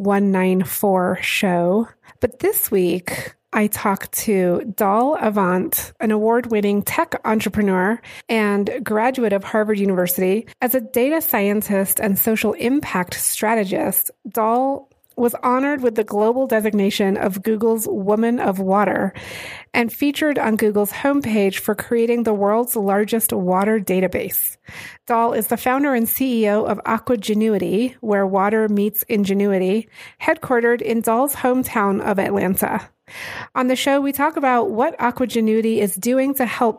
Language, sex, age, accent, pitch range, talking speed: English, female, 30-49, American, 205-250 Hz, 135 wpm